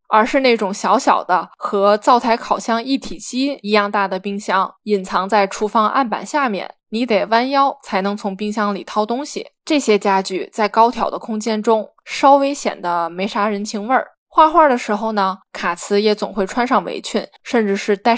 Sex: female